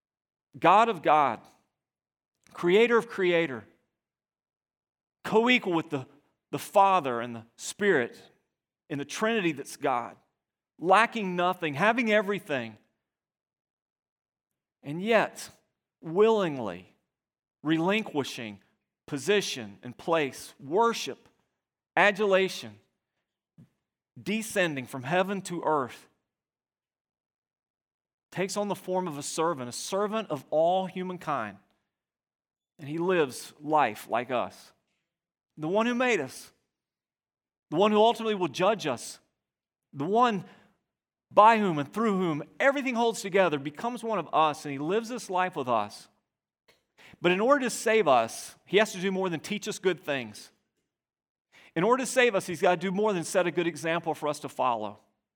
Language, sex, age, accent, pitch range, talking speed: English, male, 40-59, American, 150-210 Hz, 135 wpm